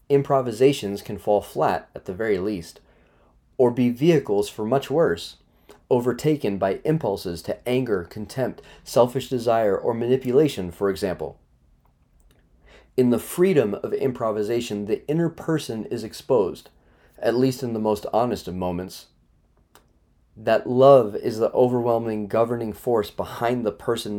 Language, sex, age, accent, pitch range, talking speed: English, male, 30-49, American, 105-130 Hz, 135 wpm